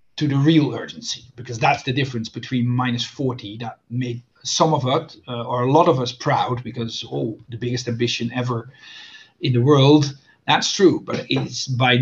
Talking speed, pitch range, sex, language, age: 175 wpm, 125-155 Hz, male, English, 40-59